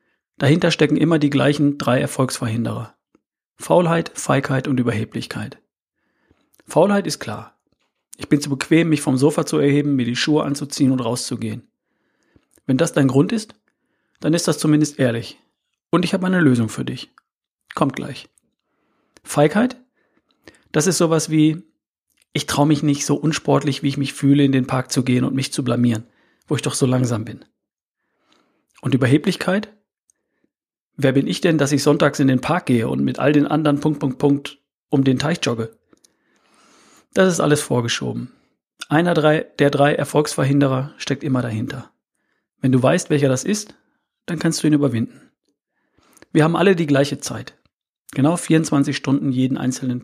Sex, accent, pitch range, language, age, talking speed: male, German, 130-155 Hz, German, 40-59, 165 wpm